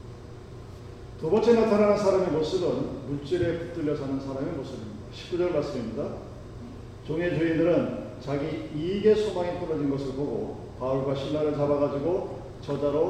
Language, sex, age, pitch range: Korean, male, 40-59, 120-195 Hz